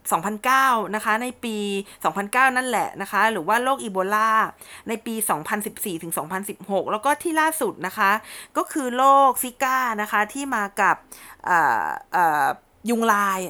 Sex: female